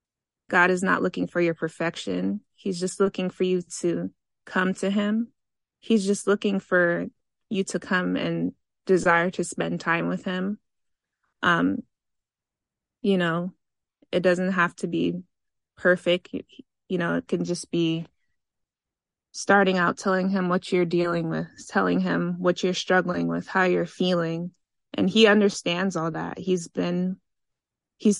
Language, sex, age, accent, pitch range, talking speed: English, female, 20-39, American, 165-190 Hz, 150 wpm